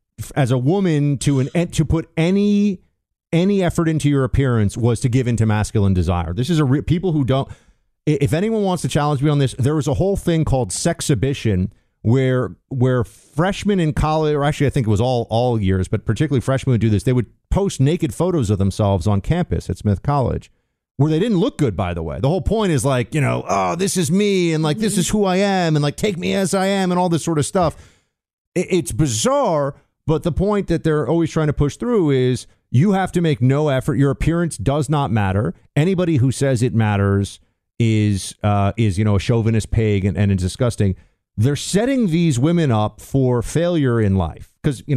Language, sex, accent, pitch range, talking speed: English, male, American, 110-160 Hz, 220 wpm